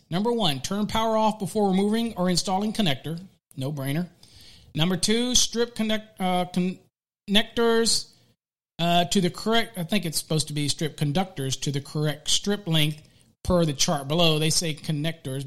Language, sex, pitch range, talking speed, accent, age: English, male, 155-210 Hz, 155 wpm, American, 40-59